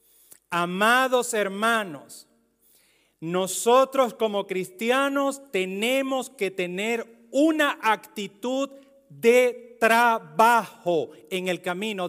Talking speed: 75 wpm